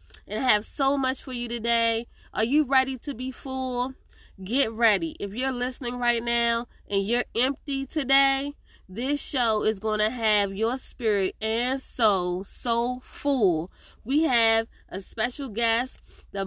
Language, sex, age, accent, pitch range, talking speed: English, female, 20-39, American, 210-260 Hz, 155 wpm